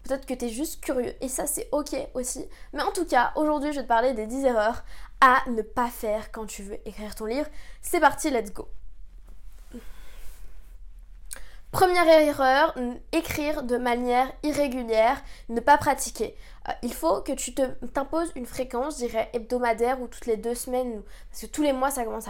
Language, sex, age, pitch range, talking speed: French, female, 20-39, 230-280 Hz, 185 wpm